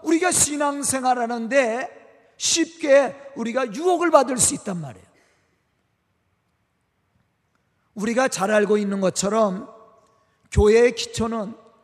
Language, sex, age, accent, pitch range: Korean, male, 40-59, native, 230-310 Hz